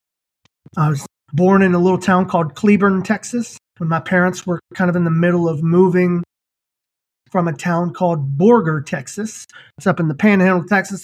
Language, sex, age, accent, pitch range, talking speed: English, male, 30-49, American, 160-195 Hz, 180 wpm